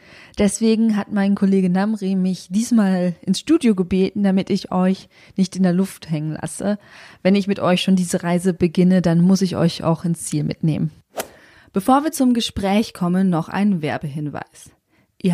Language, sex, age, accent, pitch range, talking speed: German, female, 20-39, German, 180-225 Hz, 170 wpm